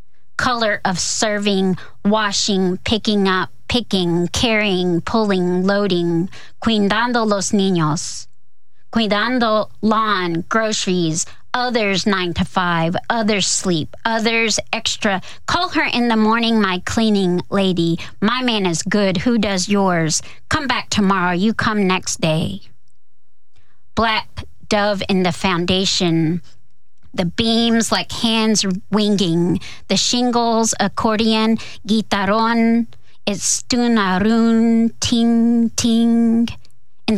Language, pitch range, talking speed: English, 180-225 Hz, 105 wpm